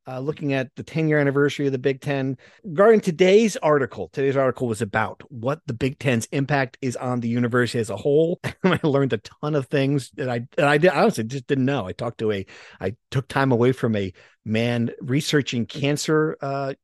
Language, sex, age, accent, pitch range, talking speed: English, male, 50-69, American, 125-165 Hz, 205 wpm